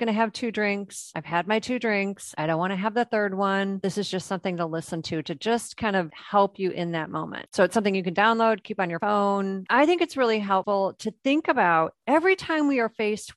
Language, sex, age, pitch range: English, female, 40-59, 180-240 Hz